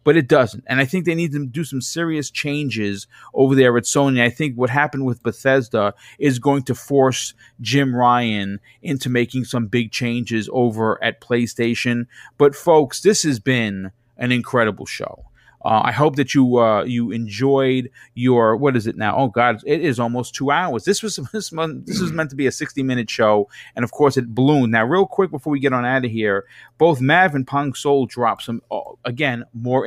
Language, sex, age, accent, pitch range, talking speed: English, male, 30-49, American, 120-150 Hz, 205 wpm